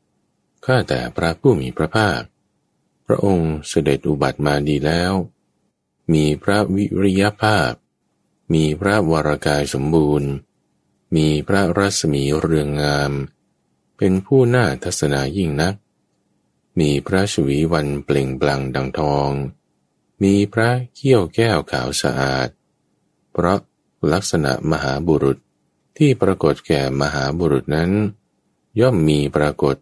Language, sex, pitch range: English, male, 70-100 Hz